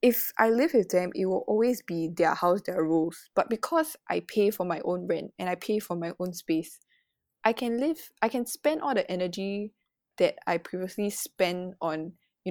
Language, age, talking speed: English, 20-39, 205 wpm